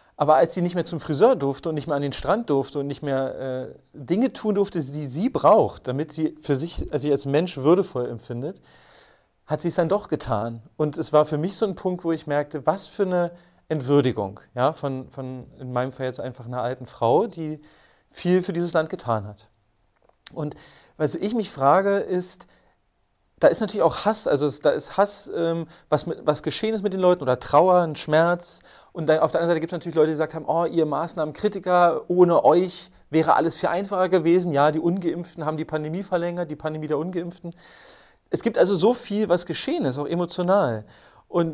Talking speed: 205 wpm